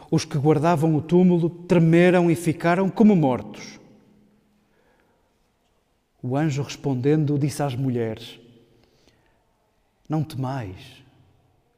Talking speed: 90 wpm